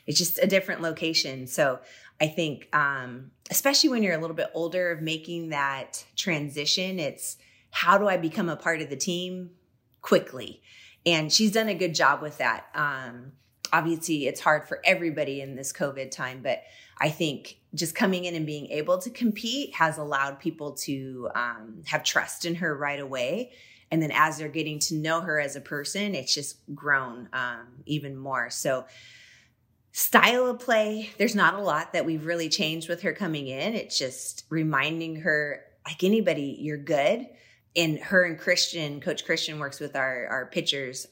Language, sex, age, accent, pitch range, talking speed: English, female, 30-49, American, 140-175 Hz, 180 wpm